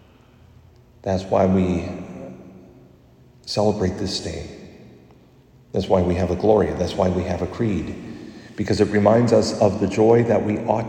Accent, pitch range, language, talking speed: American, 90-115 Hz, English, 155 wpm